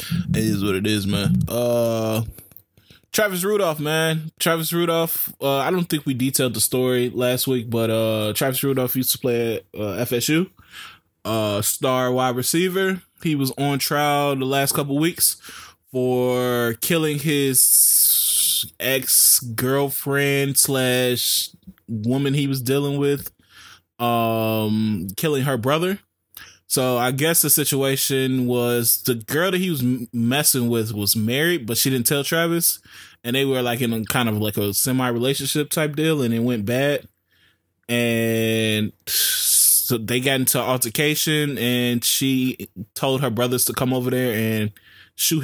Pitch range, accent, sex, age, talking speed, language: 115-140 Hz, American, male, 20-39, 150 wpm, English